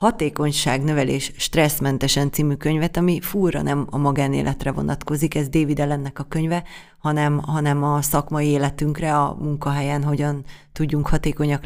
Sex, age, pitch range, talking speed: female, 30-49, 145-175 Hz, 130 wpm